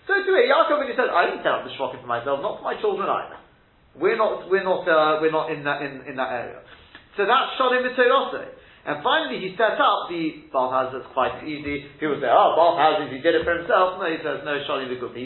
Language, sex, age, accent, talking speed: English, male, 30-49, British, 250 wpm